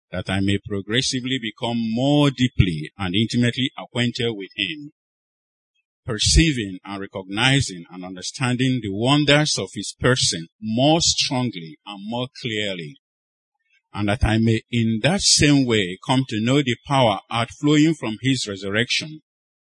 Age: 50-69